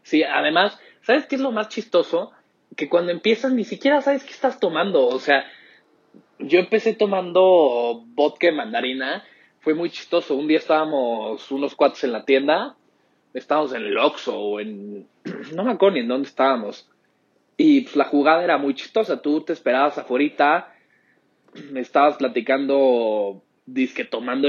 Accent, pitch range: Mexican, 130-205 Hz